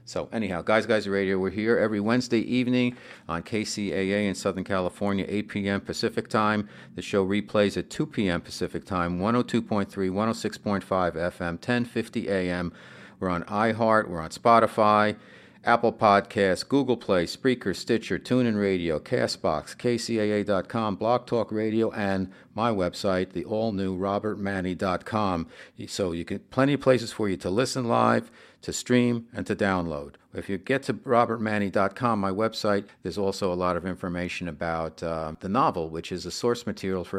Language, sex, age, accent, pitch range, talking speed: English, male, 50-69, American, 90-110 Hz, 155 wpm